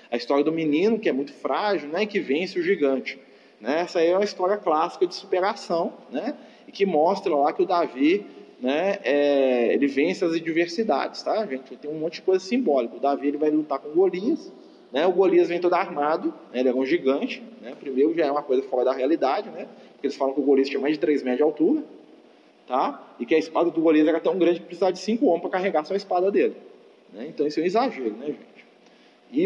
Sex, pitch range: male, 145-195 Hz